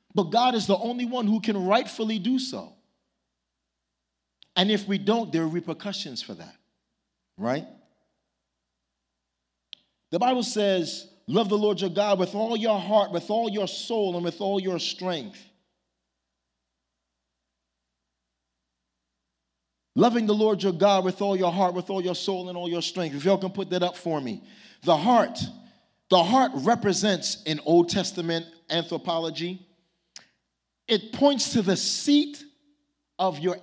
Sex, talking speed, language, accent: male, 150 wpm, English, American